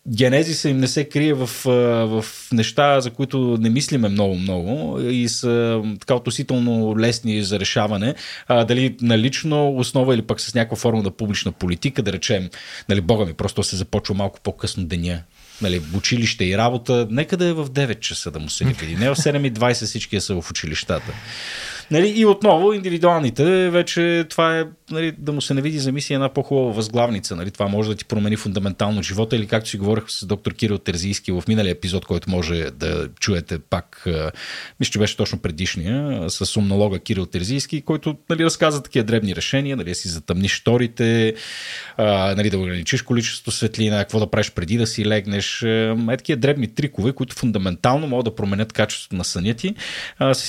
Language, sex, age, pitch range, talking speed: Bulgarian, male, 30-49, 100-135 Hz, 185 wpm